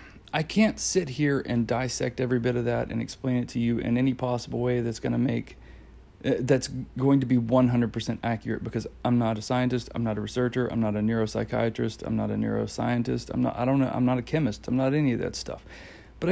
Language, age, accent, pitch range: English, 40-59, American, 115-130 Hz